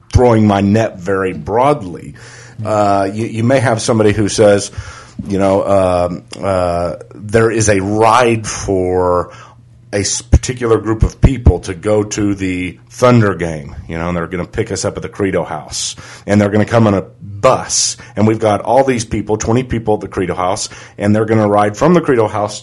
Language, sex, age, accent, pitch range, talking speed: English, male, 40-59, American, 100-125 Hz, 200 wpm